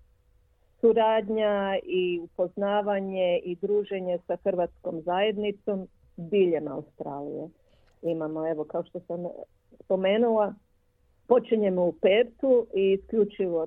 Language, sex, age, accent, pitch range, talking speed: Croatian, female, 50-69, native, 165-205 Hz, 95 wpm